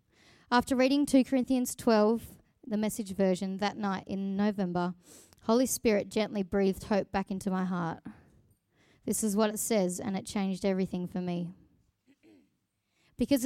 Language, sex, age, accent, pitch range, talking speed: English, female, 20-39, Australian, 195-240 Hz, 145 wpm